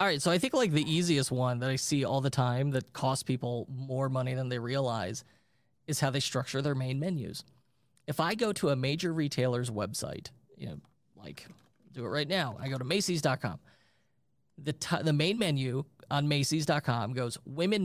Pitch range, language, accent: 130-160 Hz, English, American